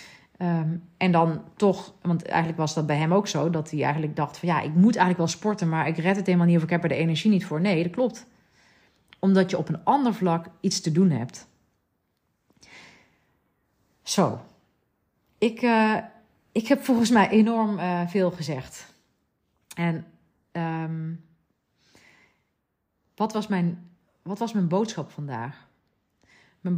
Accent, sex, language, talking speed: Dutch, female, Dutch, 160 wpm